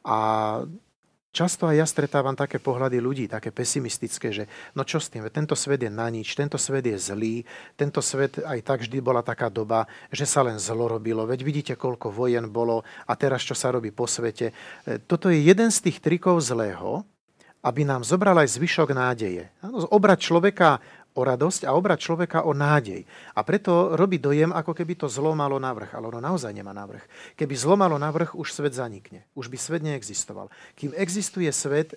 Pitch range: 120-155 Hz